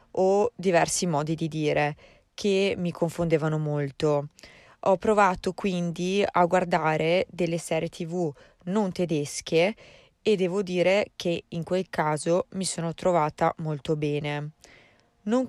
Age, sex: 20-39, female